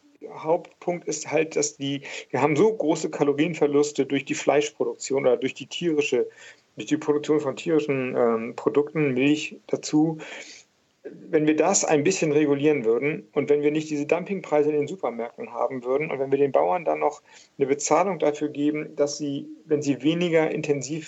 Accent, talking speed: German, 175 wpm